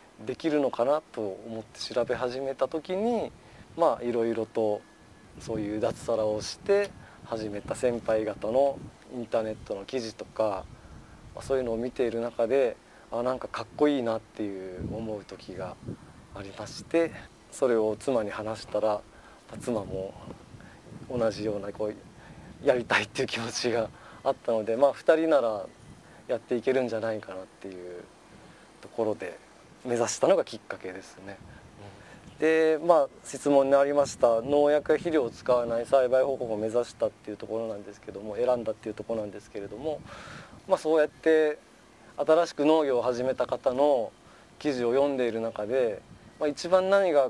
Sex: male